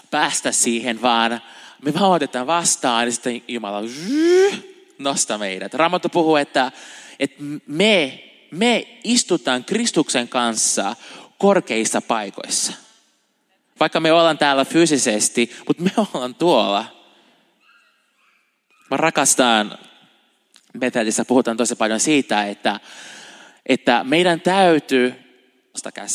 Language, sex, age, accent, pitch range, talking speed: Finnish, male, 20-39, native, 120-175 Hz, 100 wpm